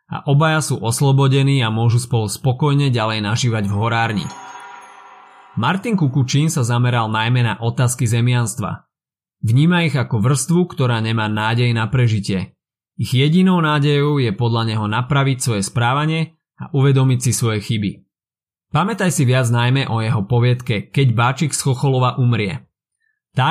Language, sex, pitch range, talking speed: Slovak, male, 115-145 Hz, 145 wpm